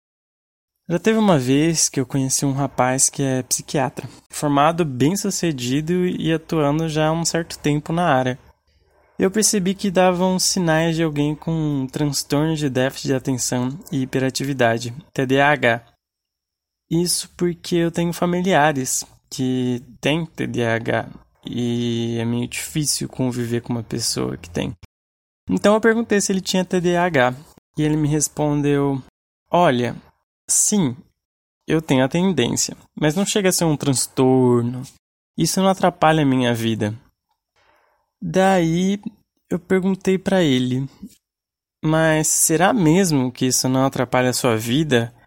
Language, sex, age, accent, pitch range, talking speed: Portuguese, male, 20-39, Brazilian, 120-165 Hz, 140 wpm